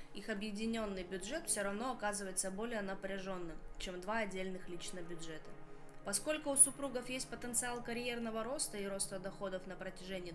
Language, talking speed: Russian, 145 wpm